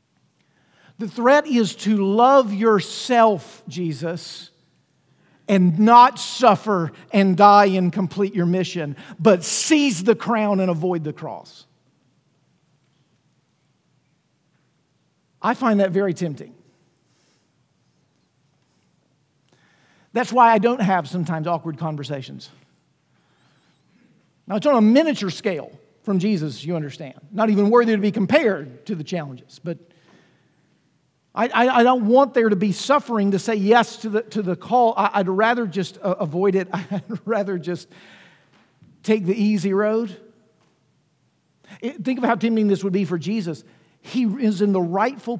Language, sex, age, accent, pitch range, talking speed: English, male, 50-69, American, 170-220 Hz, 135 wpm